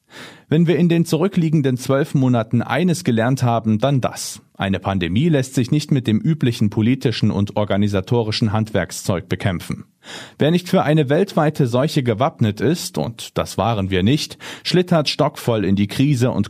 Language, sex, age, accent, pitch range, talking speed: German, male, 40-59, German, 105-145 Hz, 160 wpm